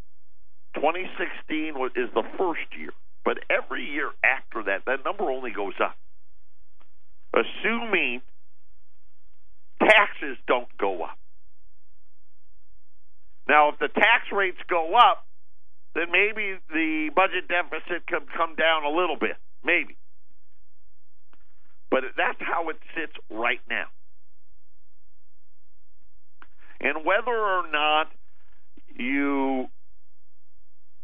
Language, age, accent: English, 50-69, American